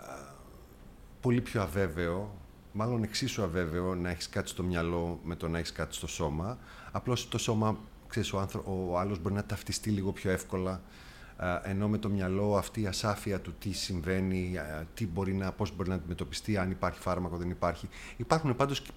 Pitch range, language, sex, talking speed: 85-105 Hz, Greek, male, 175 wpm